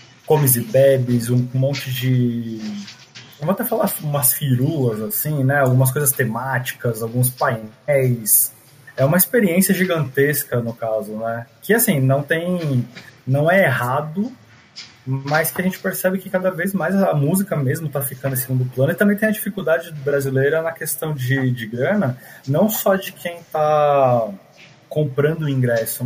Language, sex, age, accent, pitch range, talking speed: Portuguese, male, 20-39, Brazilian, 130-170 Hz, 155 wpm